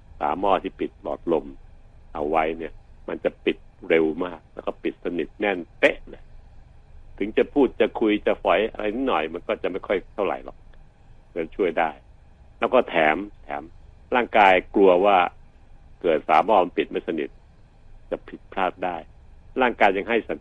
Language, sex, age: Thai, male, 60-79